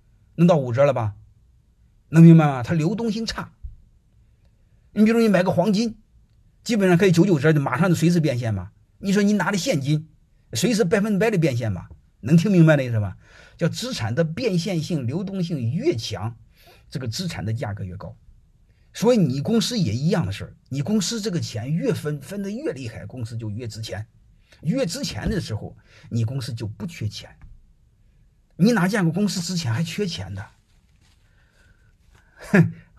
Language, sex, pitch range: Chinese, male, 110-170 Hz